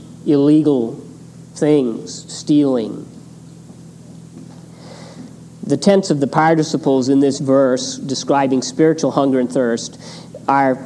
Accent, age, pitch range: American, 50-69, 130-165 Hz